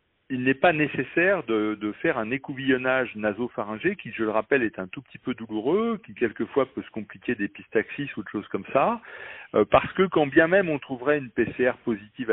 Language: French